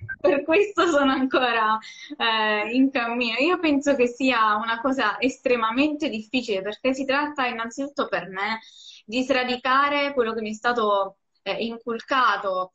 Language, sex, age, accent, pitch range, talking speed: Italian, female, 20-39, native, 205-260 Hz, 140 wpm